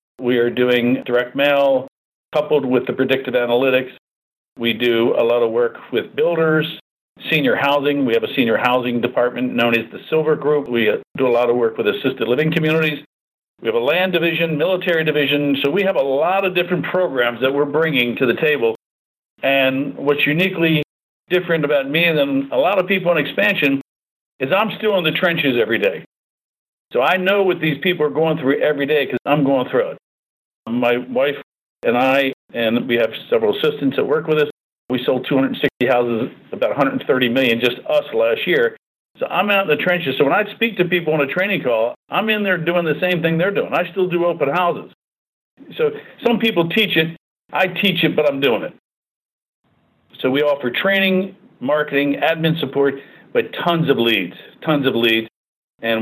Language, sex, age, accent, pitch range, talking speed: English, male, 50-69, American, 135-180 Hz, 195 wpm